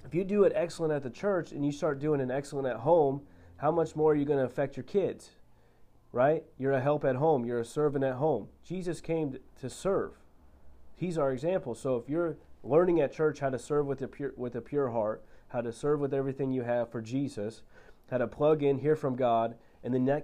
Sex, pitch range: male, 120-145 Hz